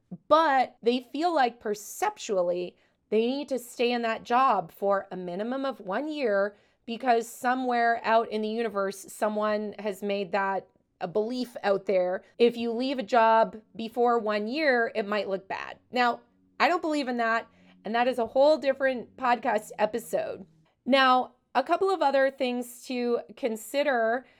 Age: 30-49